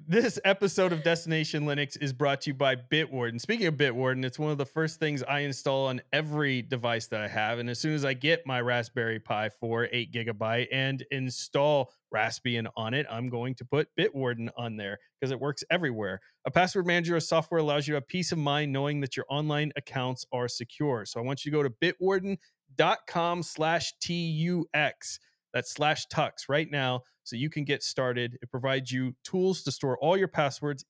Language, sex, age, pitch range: English, male, 30-49, 125-160 Hz